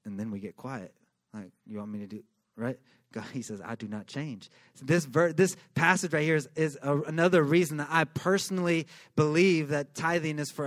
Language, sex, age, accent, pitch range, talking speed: English, male, 30-49, American, 125-195 Hz, 220 wpm